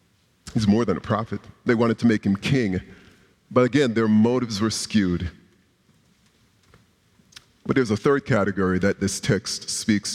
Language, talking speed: English, 155 wpm